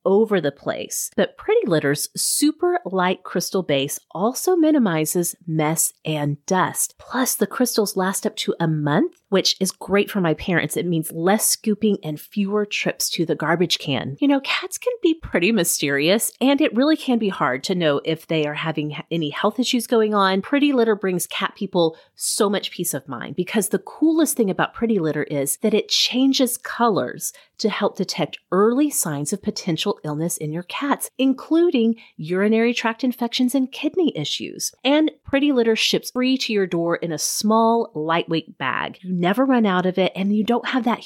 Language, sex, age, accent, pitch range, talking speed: English, female, 30-49, American, 170-255 Hz, 185 wpm